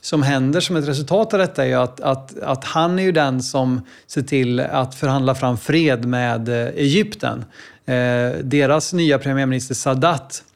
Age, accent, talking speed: 30-49, native, 165 wpm